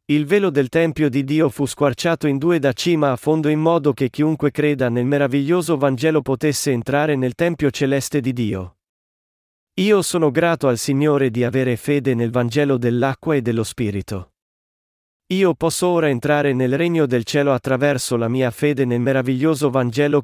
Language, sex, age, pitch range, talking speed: Italian, male, 40-59, 120-155 Hz, 170 wpm